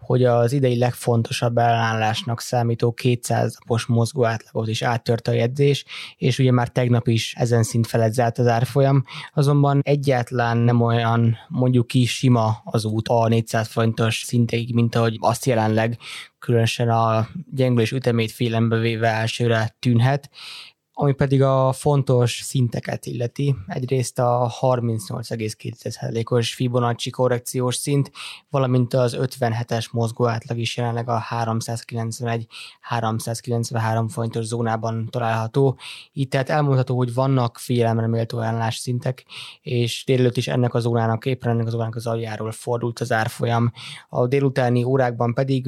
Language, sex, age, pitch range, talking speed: Hungarian, male, 20-39, 115-125 Hz, 130 wpm